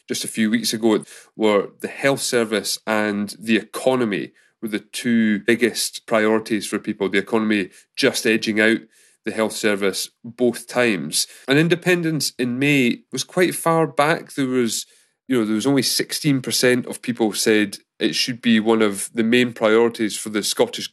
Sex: male